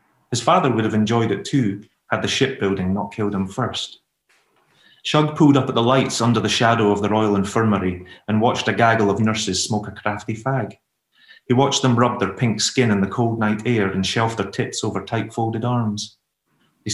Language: English